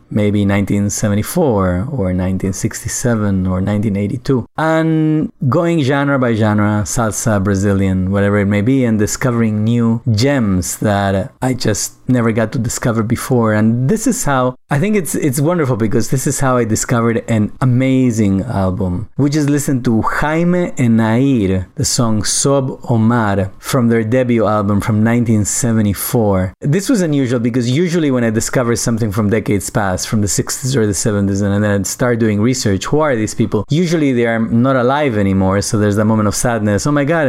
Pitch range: 100-130 Hz